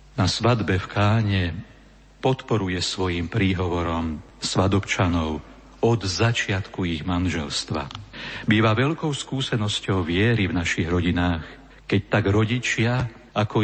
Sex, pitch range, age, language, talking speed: male, 90-110 Hz, 50-69, Slovak, 100 wpm